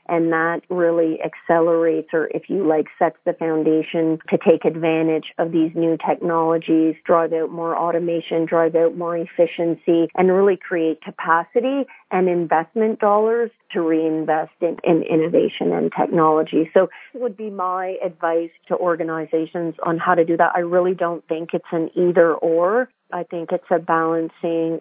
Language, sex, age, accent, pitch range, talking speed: English, female, 40-59, American, 165-175 Hz, 155 wpm